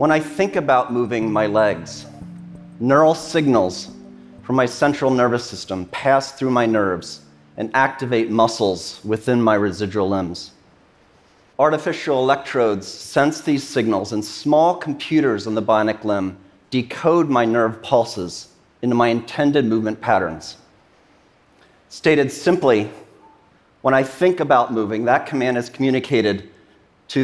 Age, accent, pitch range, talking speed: 40-59, American, 110-145 Hz, 130 wpm